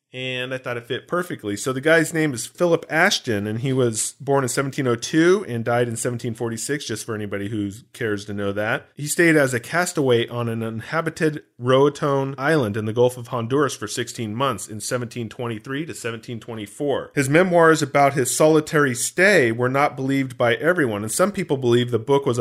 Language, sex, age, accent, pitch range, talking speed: English, male, 40-59, American, 120-145 Hz, 190 wpm